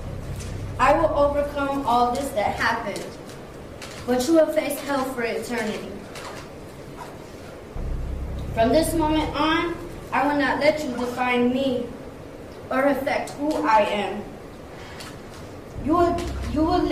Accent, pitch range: American, 240-290 Hz